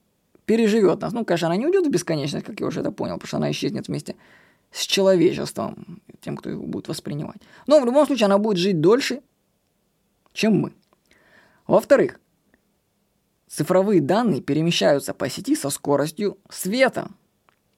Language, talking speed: Russian, 150 wpm